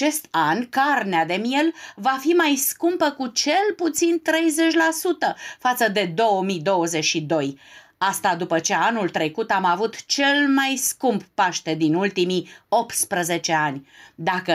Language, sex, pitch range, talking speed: Romanian, female, 175-260 Hz, 130 wpm